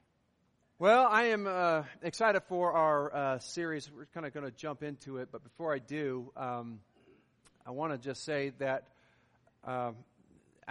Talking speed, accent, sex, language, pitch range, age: 160 wpm, American, male, English, 135-170 Hz, 40-59